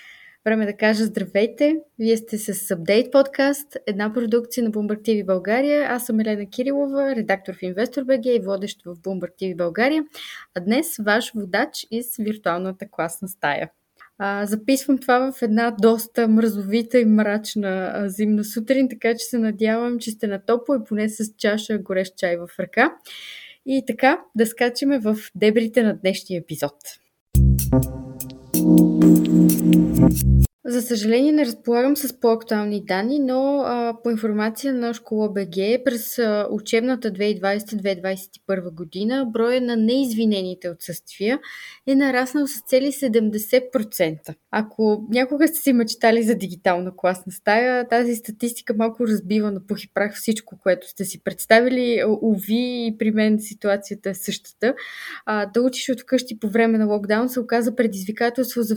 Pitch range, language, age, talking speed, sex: 200-245 Hz, Bulgarian, 20-39, 145 wpm, female